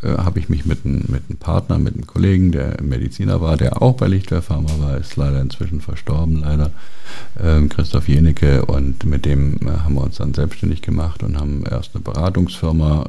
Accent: German